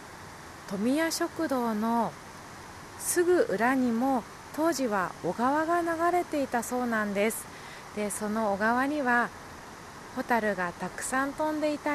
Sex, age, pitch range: female, 20-39, 220-290 Hz